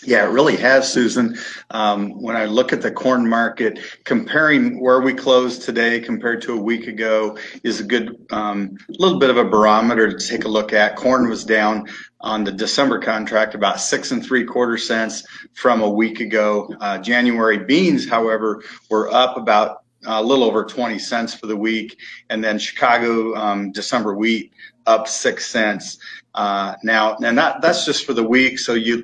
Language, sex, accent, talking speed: English, male, American, 185 wpm